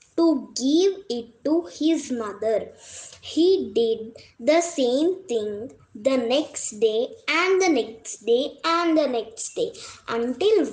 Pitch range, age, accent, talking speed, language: 235-325 Hz, 20-39, native, 130 wpm, Telugu